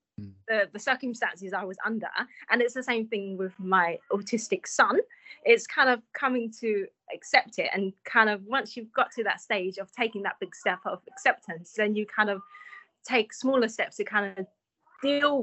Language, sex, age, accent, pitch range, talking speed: English, female, 20-39, British, 200-260 Hz, 190 wpm